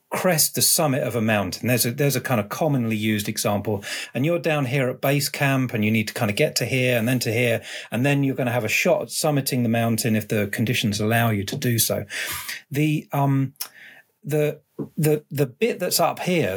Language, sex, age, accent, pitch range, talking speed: English, male, 40-59, British, 120-155 Hz, 230 wpm